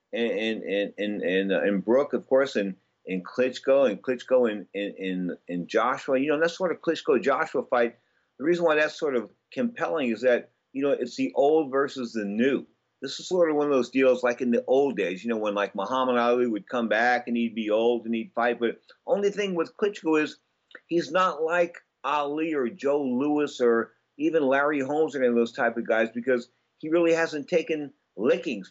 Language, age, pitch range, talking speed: English, 50-69, 115-150 Hz, 215 wpm